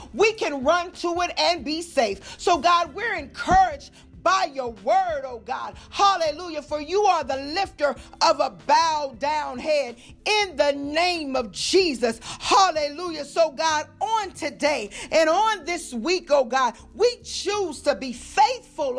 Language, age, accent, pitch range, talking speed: English, 40-59, American, 280-355 Hz, 155 wpm